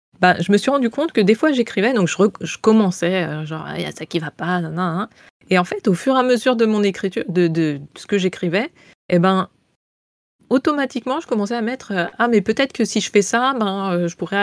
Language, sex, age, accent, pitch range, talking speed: French, female, 20-39, French, 170-230 Hz, 260 wpm